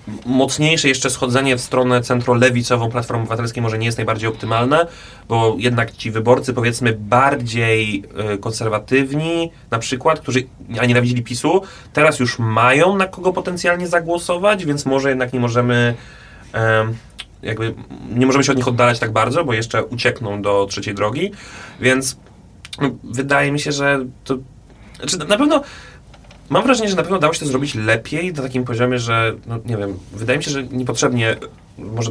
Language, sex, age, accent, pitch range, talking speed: Polish, male, 30-49, native, 110-135 Hz, 165 wpm